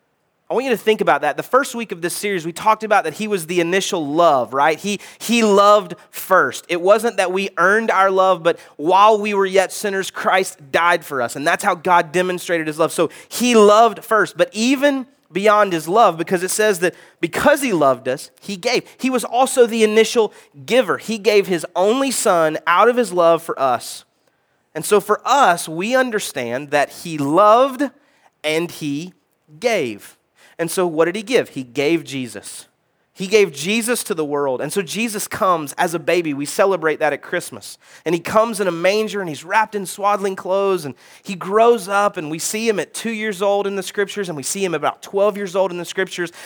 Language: English